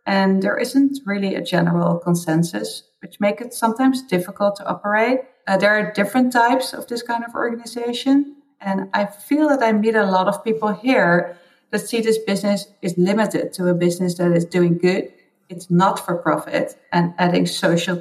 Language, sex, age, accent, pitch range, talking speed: English, female, 30-49, Dutch, 180-225 Hz, 185 wpm